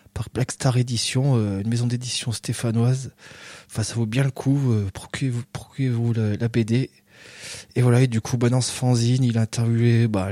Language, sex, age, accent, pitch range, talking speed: French, male, 20-39, French, 110-125 Hz, 180 wpm